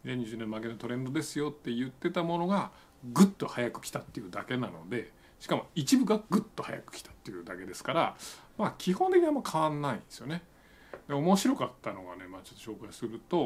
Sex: male